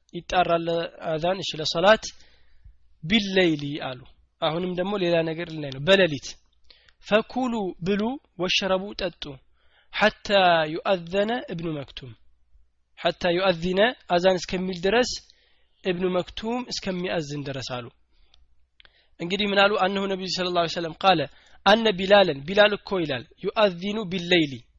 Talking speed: 105 wpm